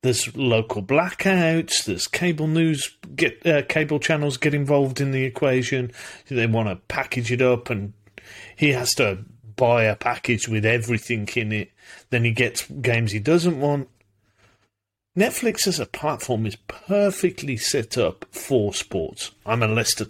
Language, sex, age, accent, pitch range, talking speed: English, male, 40-59, British, 110-135 Hz, 155 wpm